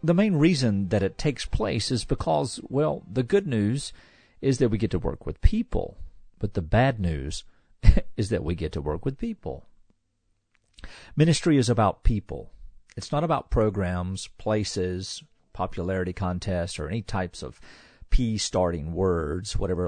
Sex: male